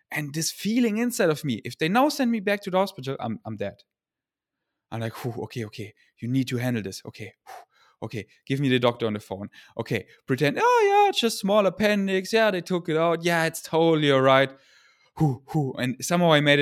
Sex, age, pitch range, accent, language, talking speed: male, 20-39, 115-150 Hz, German, English, 220 wpm